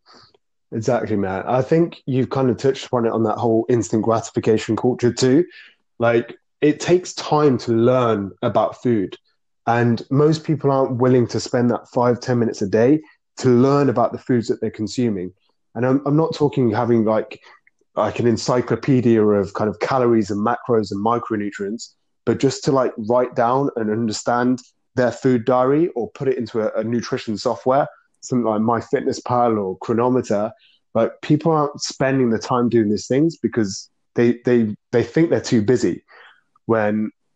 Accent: British